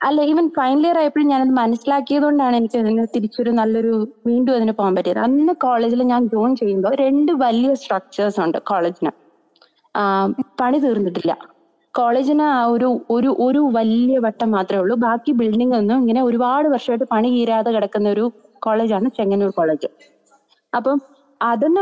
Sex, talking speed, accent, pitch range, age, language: female, 135 wpm, native, 215-260 Hz, 20-39, Malayalam